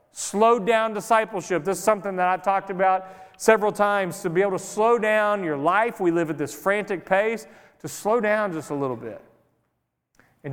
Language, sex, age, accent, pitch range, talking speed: English, male, 40-59, American, 180-215 Hz, 195 wpm